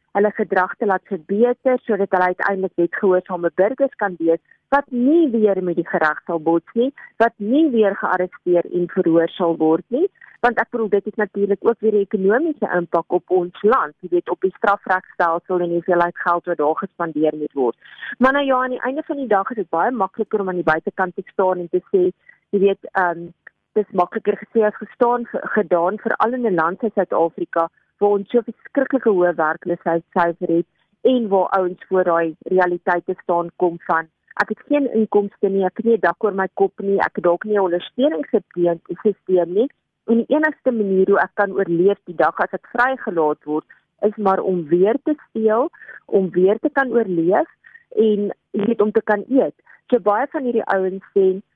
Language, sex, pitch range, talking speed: German, female, 175-225 Hz, 195 wpm